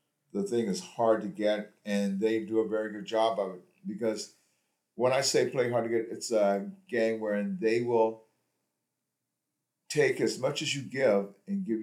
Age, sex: 50-69, male